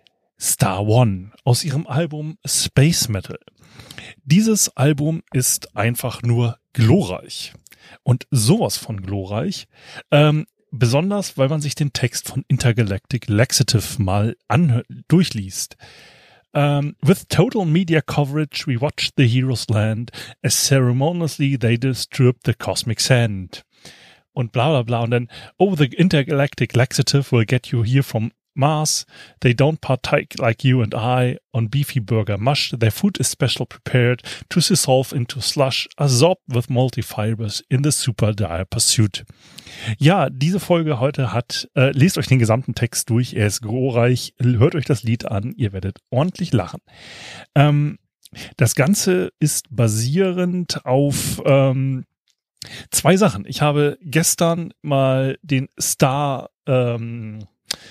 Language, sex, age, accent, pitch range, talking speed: German, male, 30-49, German, 115-150 Hz, 135 wpm